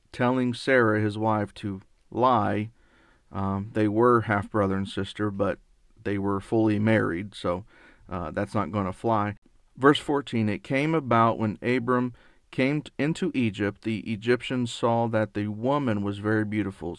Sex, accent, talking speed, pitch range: male, American, 150 wpm, 105-125 Hz